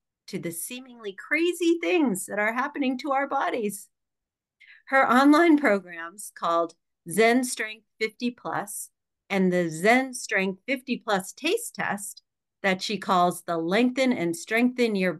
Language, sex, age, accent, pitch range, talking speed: English, female, 50-69, American, 180-250 Hz, 140 wpm